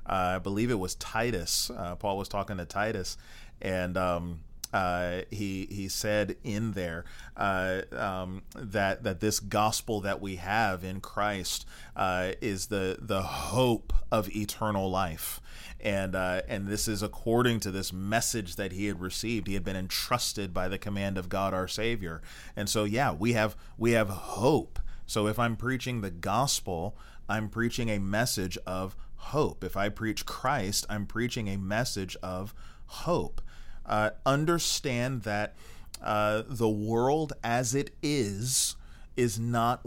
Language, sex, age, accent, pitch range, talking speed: English, male, 30-49, American, 95-115 Hz, 155 wpm